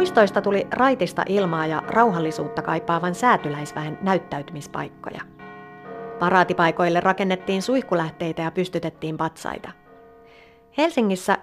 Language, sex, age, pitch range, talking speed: Finnish, female, 30-49, 165-220 Hz, 85 wpm